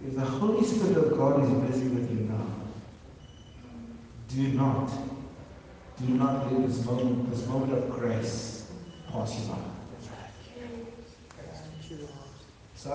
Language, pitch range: English, 130-170 Hz